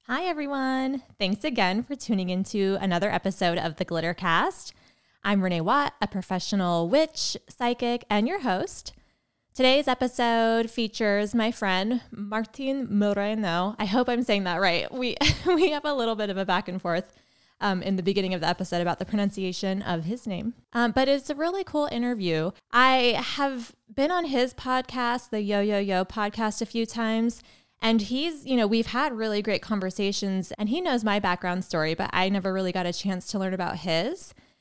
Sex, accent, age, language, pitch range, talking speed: female, American, 20-39, English, 190-240 Hz, 185 wpm